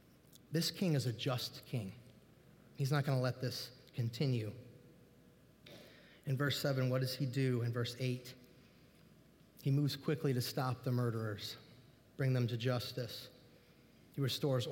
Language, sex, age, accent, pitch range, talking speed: English, male, 30-49, American, 125-145 Hz, 145 wpm